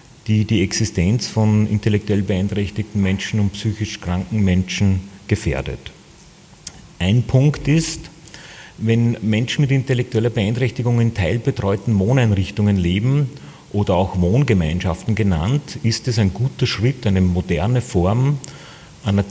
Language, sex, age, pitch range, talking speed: German, male, 40-59, 95-120 Hz, 115 wpm